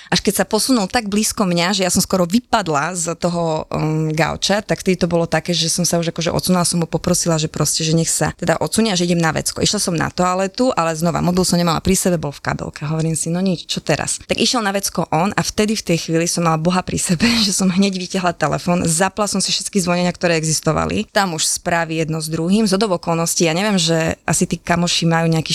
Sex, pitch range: female, 165-190 Hz